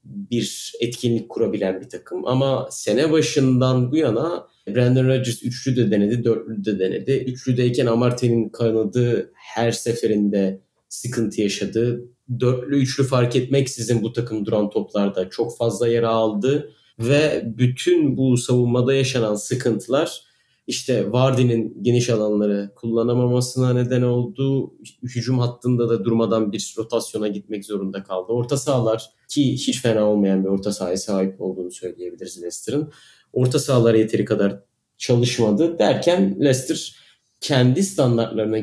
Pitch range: 110-130 Hz